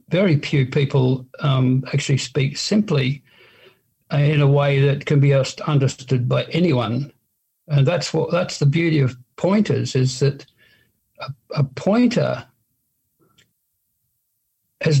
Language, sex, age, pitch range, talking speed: English, male, 60-79, 130-155 Hz, 120 wpm